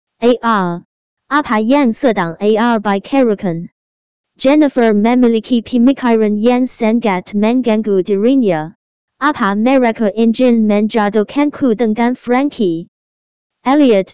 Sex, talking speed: male, 95 wpm